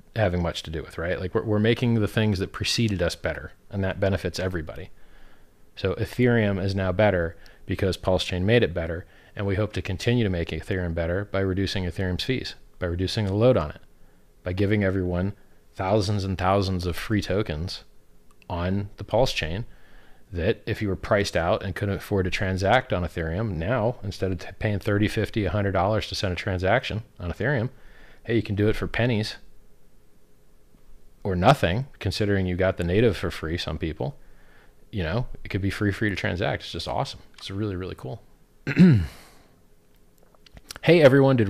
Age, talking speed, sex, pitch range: 40-59, 180 wpm, male, 85-110 Hz